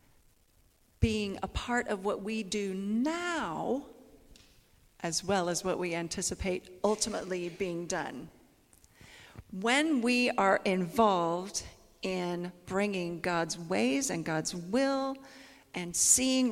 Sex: female